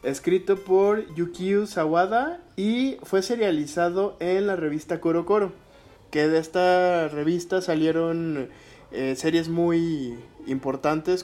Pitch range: 150-185 Hz